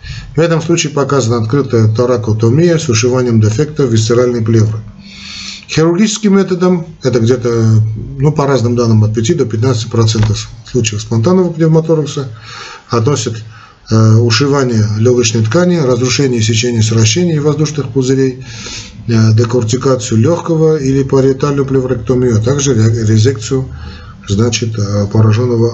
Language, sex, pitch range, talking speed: Russian, male, 115-140 Hz, 105 wpm